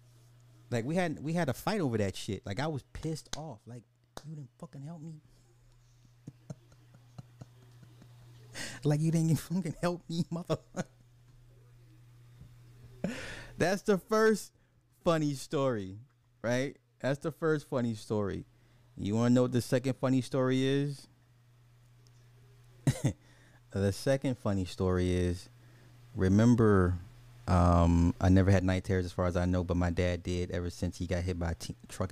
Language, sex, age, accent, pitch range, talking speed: English, male, 30-49, American, 95-125 Hz, 150 wpm